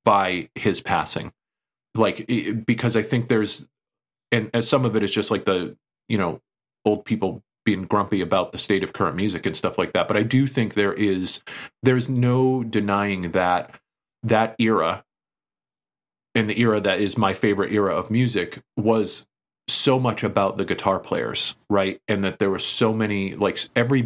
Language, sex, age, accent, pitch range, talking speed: English, male, 40-59, American, 95-115 Hz, 175 wpm